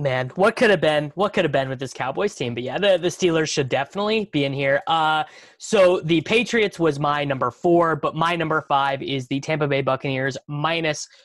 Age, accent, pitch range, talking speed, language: 20-39, American, 140-190 Hz, 220 wpm, English